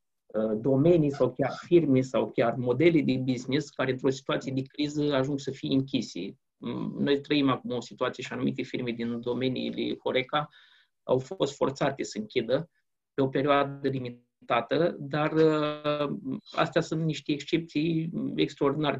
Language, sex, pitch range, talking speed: Romanian, male, 130-175 Hz, 140 wpm